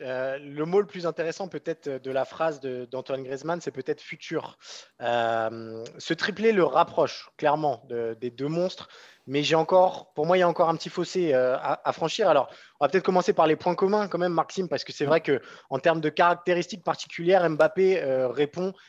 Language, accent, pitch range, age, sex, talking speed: French, French, 145-185 Hz, 20-39, male, 210 wpm